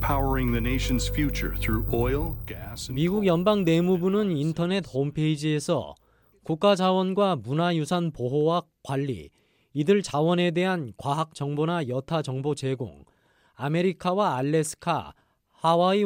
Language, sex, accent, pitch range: Korean, male, native, 135-175 Hz